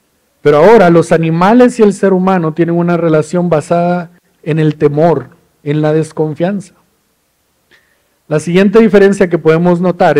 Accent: Mexican